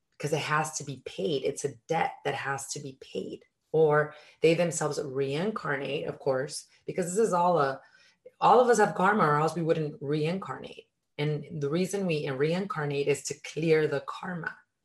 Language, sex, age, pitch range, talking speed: English, female, 30-49, 145-175 Hz, 180 wpm